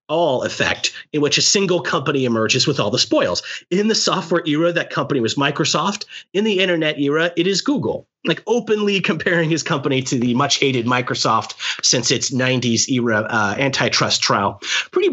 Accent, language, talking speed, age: American, English, 180 wpm, 30-49